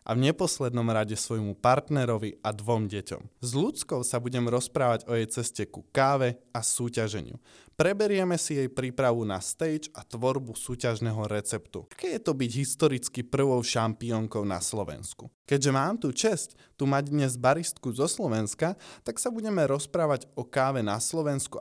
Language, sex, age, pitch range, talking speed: Slovak, male, 20-39, 115-160 Hz, 160 wpm